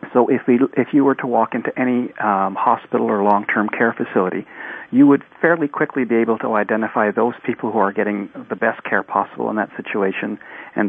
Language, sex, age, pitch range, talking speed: English, male, 40-59, 105-125 Hz, 205 wpm